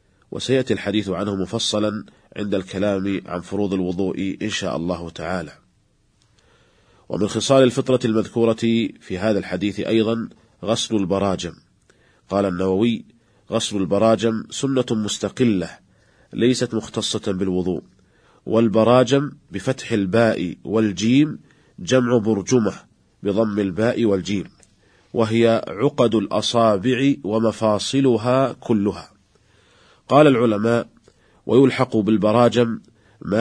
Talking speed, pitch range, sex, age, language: 90 wpm, 100-115 Hz, male, 40-59, Arabic